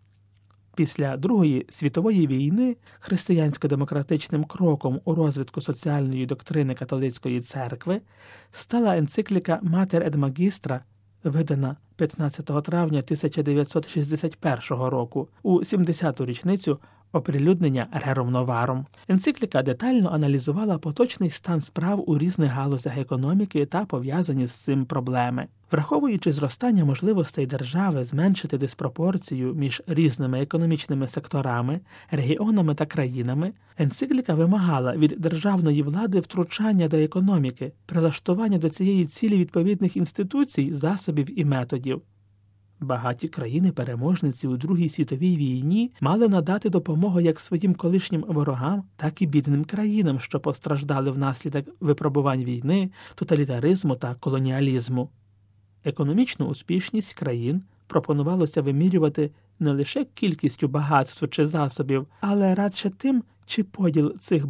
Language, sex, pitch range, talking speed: Ukrainian, male, 135-180 Hz, 105 wpm